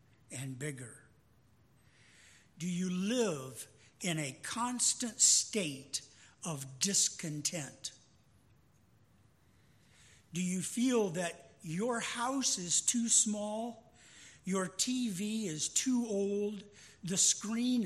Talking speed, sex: 90 wpm, male